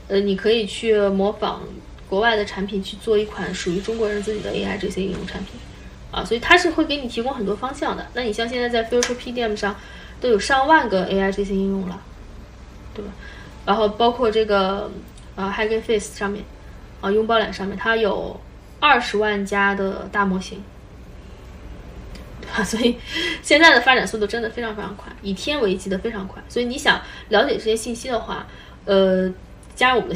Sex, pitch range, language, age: female, 200-235 Hz, Chinese, 20-39